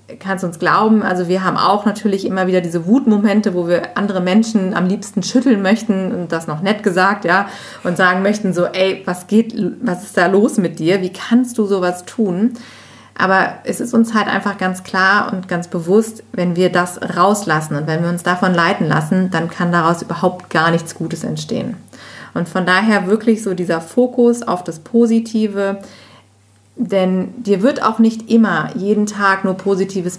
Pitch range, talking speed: 175-215 Hz, 190 wpm